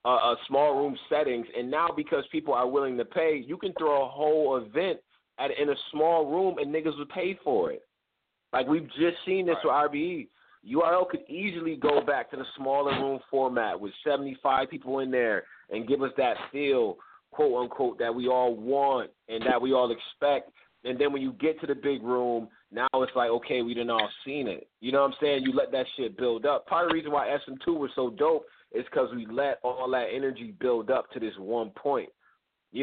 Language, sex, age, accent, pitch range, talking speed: English, male, 30-49, American, 120-155 Hz, 220 wpm